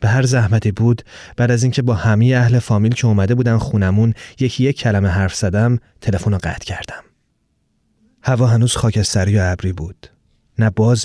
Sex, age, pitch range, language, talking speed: male, 30-49, 100-125 Hz, Persian, 175 wpm